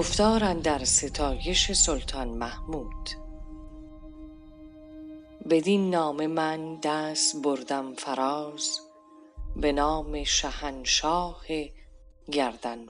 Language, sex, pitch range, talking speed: Persian, female, 140-180 Hz, 70 wpm